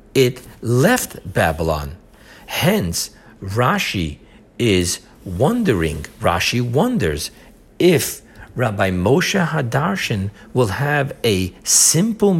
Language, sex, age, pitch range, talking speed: English, male, 50-69, 105-145 Hz, 80 wpm